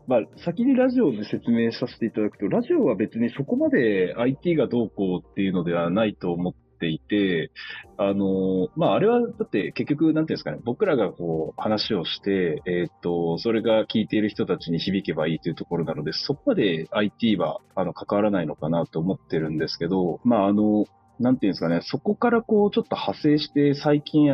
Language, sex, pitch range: Japanese, male, 90-150 Hz